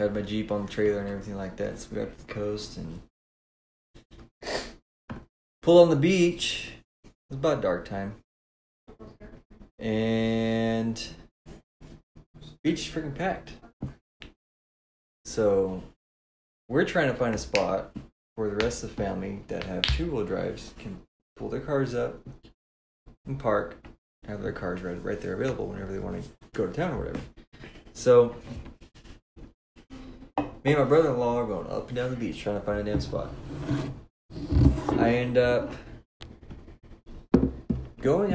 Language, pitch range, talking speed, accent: English, 100-125 Hz, 145 wpm, American